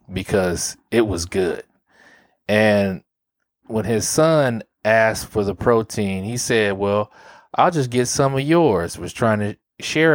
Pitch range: 100-125 Hz